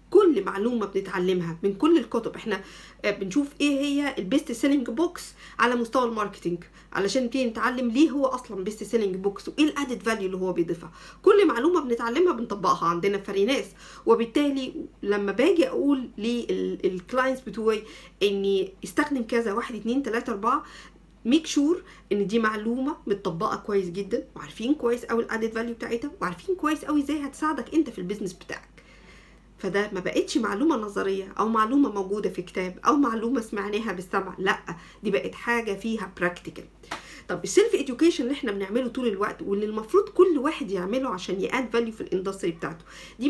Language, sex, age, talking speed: Arabic, female, 50-69, 160 wpm